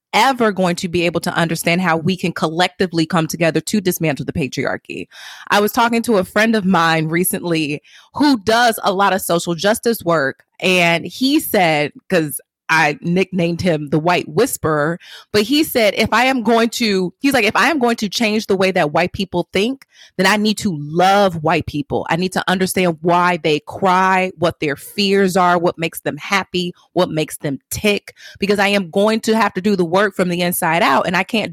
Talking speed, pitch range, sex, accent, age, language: 205 wpm, 175-230 Hz, female, American, 20-39, English